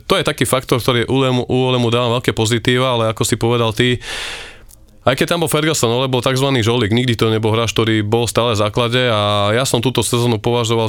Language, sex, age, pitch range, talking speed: Slovak, male, 20-39, 115-130 Hz, 210 wpm